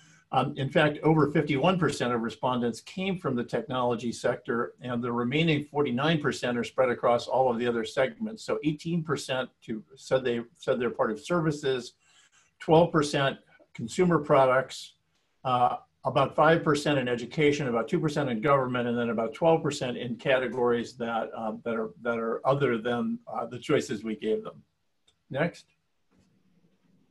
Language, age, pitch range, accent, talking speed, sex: English, 50-69, 120-155 Hz, American, 135 wpm, male